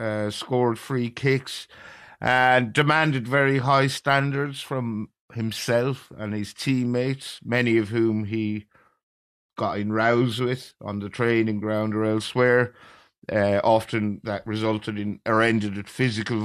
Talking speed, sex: 135 wpm, male